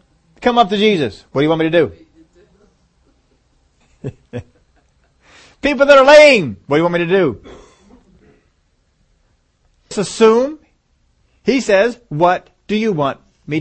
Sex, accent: male, American